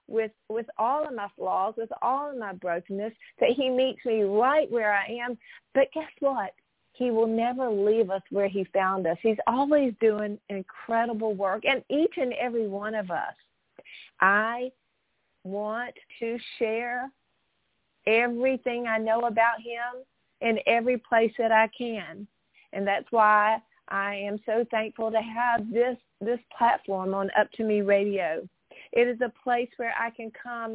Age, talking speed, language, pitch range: 40-59, 160 wpm, English, 200-240 Hz